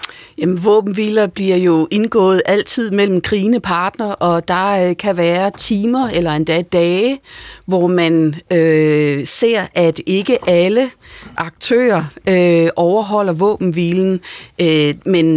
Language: Danish